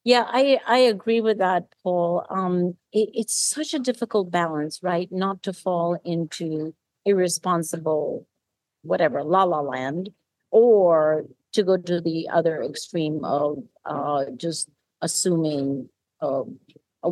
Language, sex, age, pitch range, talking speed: English, female, 50-69, 165-215 Hz, 130 wpm